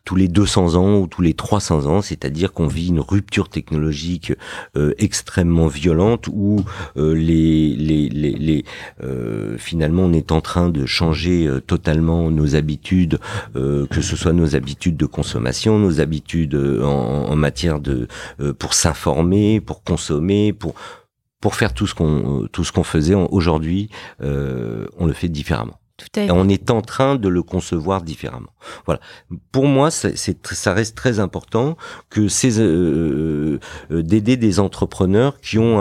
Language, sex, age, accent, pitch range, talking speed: French, male, 50-69, French, 75-100 Hz, 165 wpm